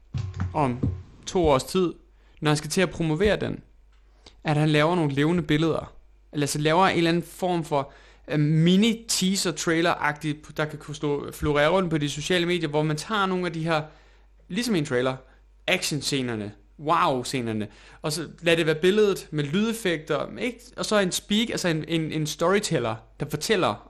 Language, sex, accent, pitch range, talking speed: Danish, male, native, 145-180 Hz, 175 wpm